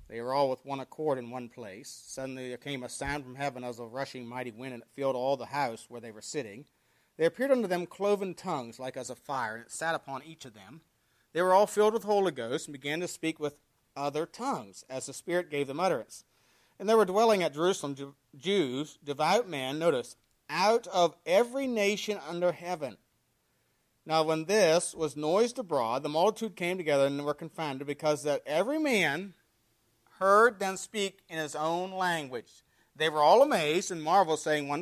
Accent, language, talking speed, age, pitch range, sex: American, English, 200 wpm, 40-59, 135-180 Hz, male